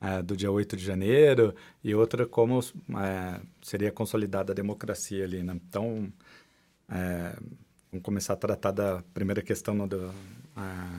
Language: Portuguese